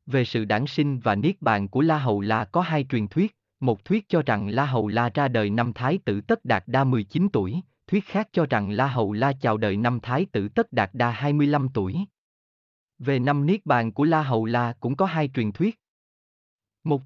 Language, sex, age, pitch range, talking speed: Vietnamese, male, 20-39, 110-155 Hz, 220 wpm